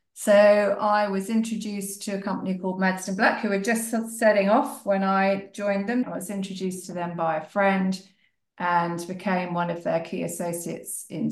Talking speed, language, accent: 185 wpm, English, British